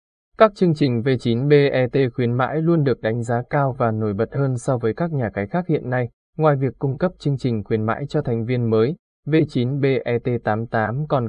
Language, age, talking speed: Vietnamese, 20-39, 195 wpm